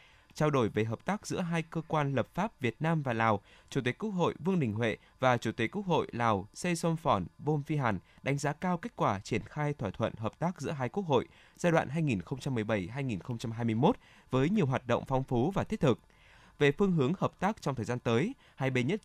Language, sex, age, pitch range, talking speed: Vietnamese, male, 20-39, 115-170 Hz, 225 wpm